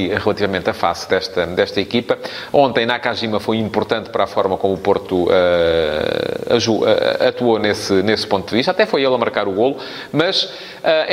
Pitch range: 100-130 Hz